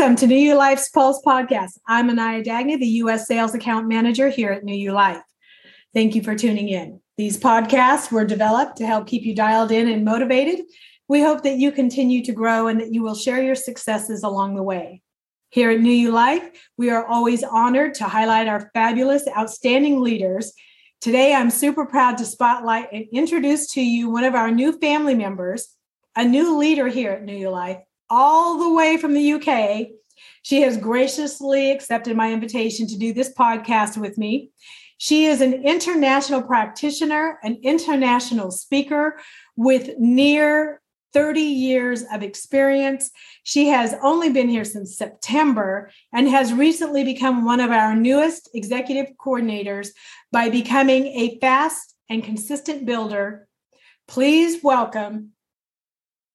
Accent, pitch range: American, 225-275 Hz